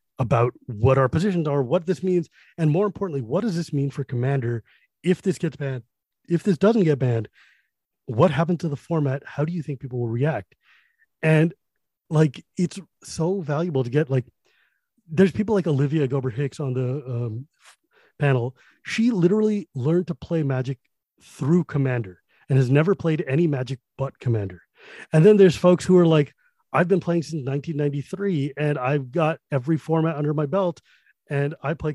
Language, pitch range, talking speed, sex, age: English, 135-175 Hz, 180 wpm, male, 30-49